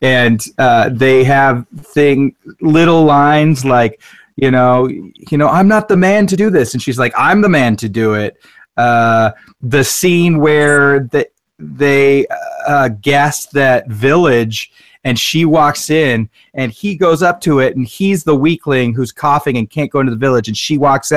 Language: English